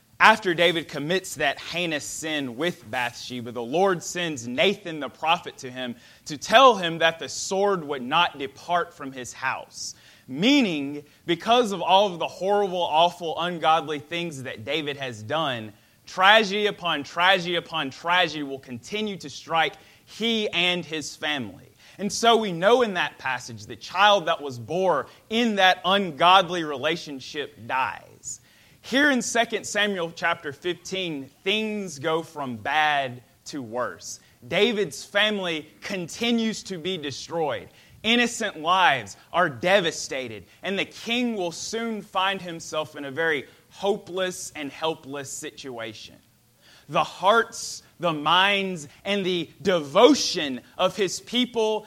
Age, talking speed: 30-49, 135 wpm